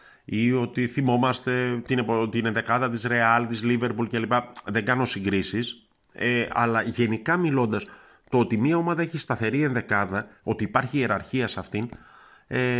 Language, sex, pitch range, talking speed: Greek, male, 110-140 Hz, 150 wpm